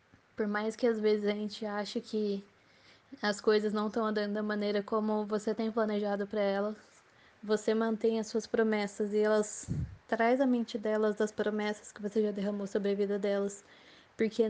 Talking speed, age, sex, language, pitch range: 180 wpm, 10-29, female, Portuguese, 210-230 Hz